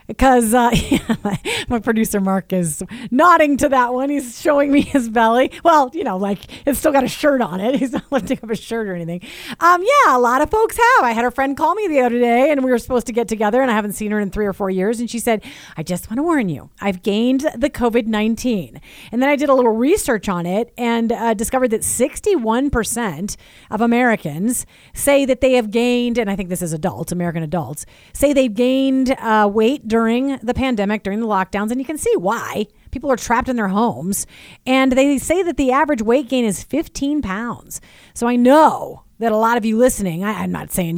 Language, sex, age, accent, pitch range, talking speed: English, female, 40-59, American, 205-270 Hz, 225 wpm